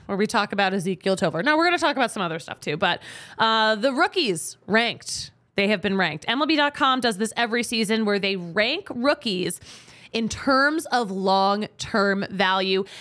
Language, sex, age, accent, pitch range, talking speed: English, female, 20-39, American, 195-265 Hz, 180 wpm